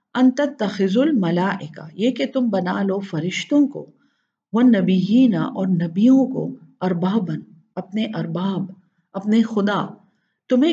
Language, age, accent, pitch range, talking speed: English, 50-69, Indian, 175-240 Hz, 115 wpm